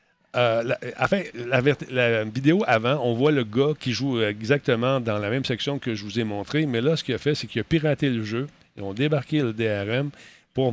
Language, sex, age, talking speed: French, male, 40-59, 230 wpm